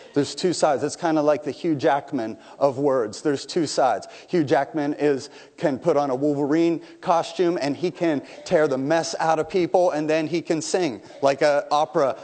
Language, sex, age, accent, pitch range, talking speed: English, male, 30-49, American, 175-255 Hz, 200 wpm